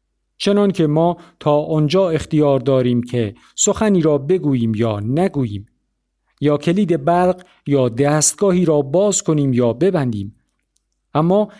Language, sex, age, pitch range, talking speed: Persian, male, 50-69, 125-175 Hz, 120 wpm